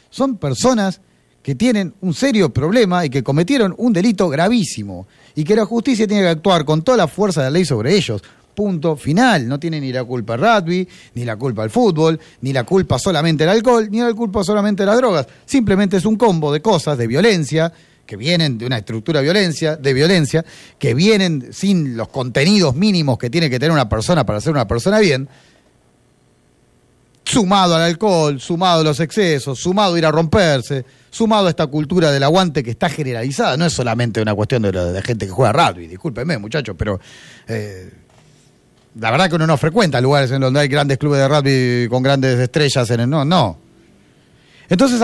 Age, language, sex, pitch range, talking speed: 30-49, Spanish, male, 135-205 Hz, 200 wpm